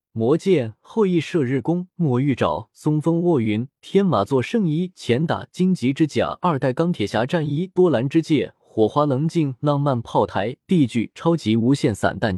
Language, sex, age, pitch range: Chinese, male, 20-39, 115-160 Hz